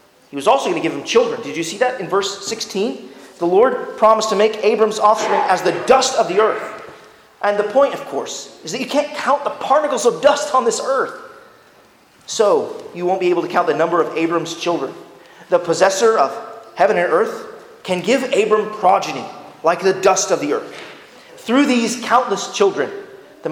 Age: 30-49